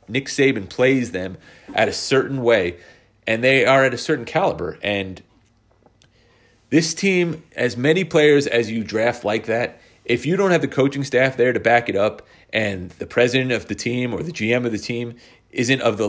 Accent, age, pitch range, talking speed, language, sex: American, 30-49, 105-135 Hz, 200 wpm, English, male